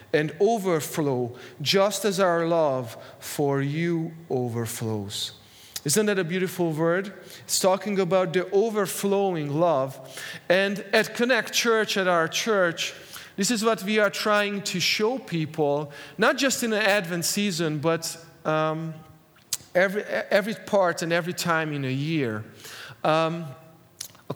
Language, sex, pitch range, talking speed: English, male, 160-195 Hz, 135 wpm